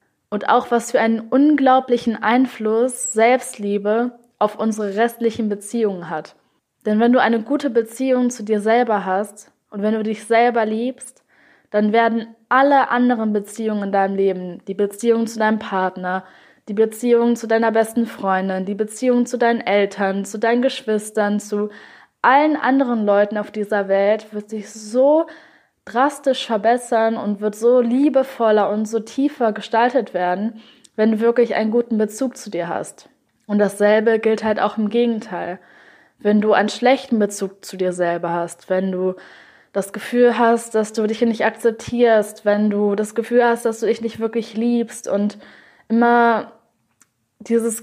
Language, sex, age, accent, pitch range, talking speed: German, female, 10-29, German, 210-235 Hz, 160 wpm